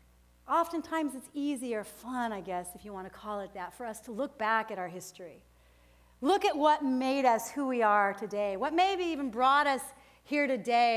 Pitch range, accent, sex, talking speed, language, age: 190-290 Hz, American, female, 210 wpm, English, 40-59